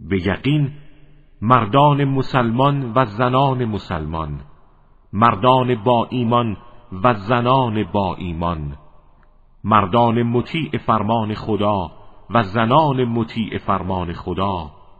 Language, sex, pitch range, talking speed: Arabic, male, 95-120 Hz, 90 wpm